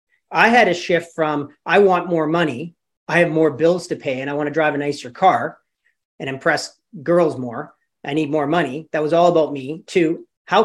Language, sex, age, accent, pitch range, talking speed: English, male, 40-59, American, 150-195 Hz, 215 wpm